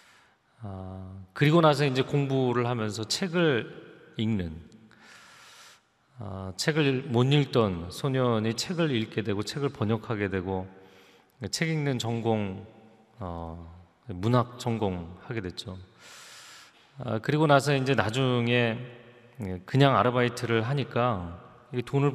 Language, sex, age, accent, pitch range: Korean, male, 30-49, native, 100-130 Hz